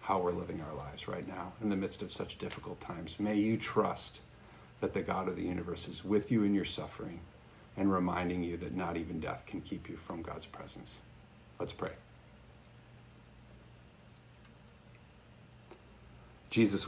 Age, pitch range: 50-69, 95-110 Hz